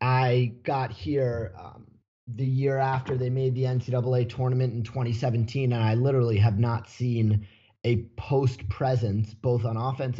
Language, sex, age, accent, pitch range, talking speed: English, male, 30-49, American, 110-130 Hz, 155 wpm